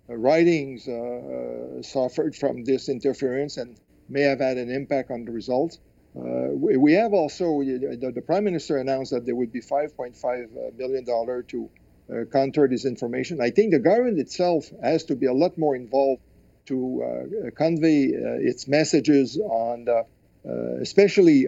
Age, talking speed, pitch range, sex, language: 50-69, 160 wpm, 125-150 Hz, male, English